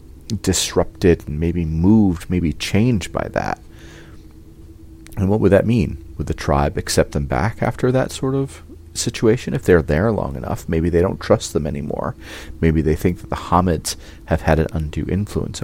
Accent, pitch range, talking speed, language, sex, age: American, 80-95 Hz, 175 wpm, English, male, 30-49